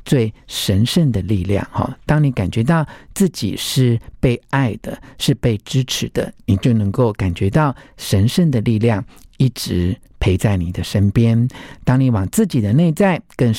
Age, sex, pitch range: 50-69, male, 105-145 Hz